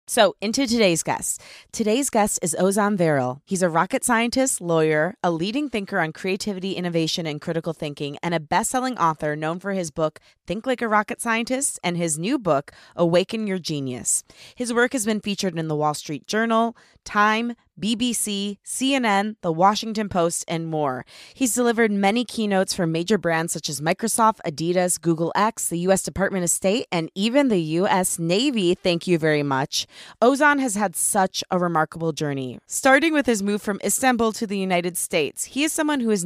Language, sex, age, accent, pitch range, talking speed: English, female, 20-39, American, 160-215 Hz, 185 wpm